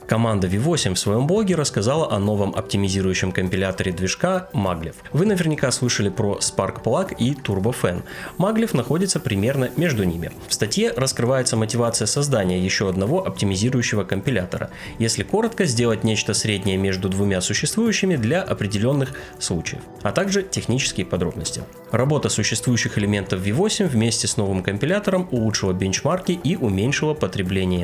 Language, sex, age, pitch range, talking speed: Russian, male, 30-49, 95-145 Hz, 135 wpm